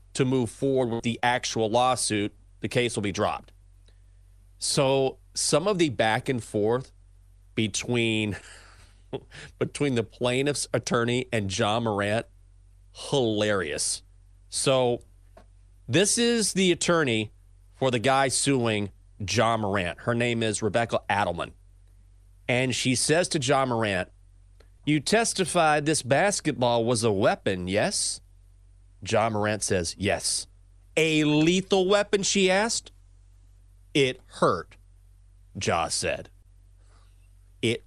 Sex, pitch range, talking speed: male, 95-145 Hz, 115 wpm